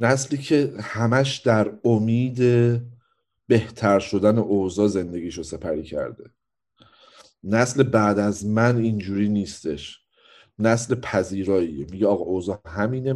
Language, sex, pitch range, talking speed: Persian, male, 100-120 Hz, 110 wpm